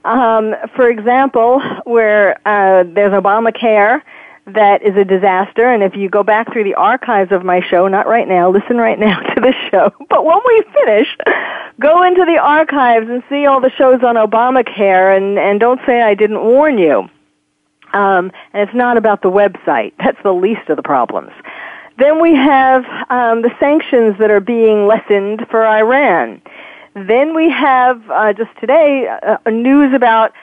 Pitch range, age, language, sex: 205-275 Hz, 40-59, English, female